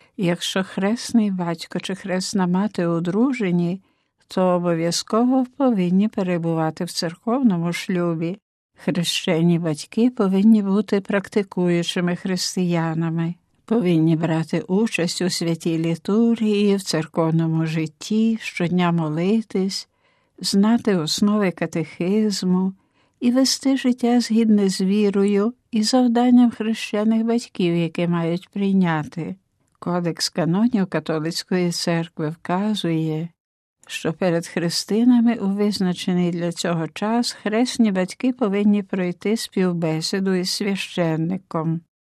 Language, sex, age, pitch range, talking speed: Ukrainian, female, 60-79, 170-215 Hz, 95 wpm